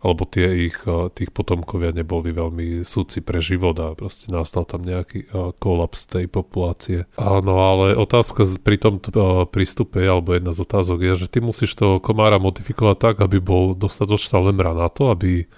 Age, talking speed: 30-49, 165 wpm